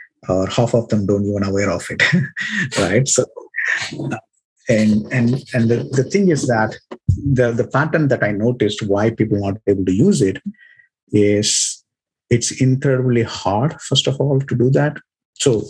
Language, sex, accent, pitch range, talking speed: English, male, Indian, 105-130 Hz, 170 wpm